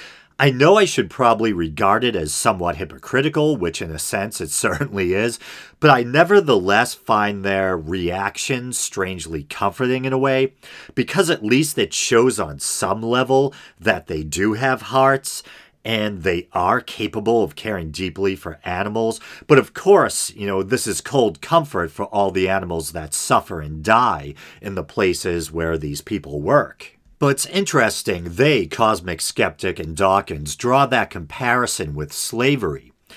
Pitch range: 80-115 Hz